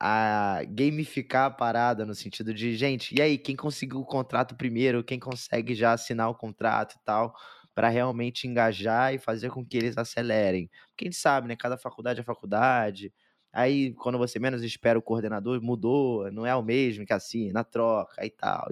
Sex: male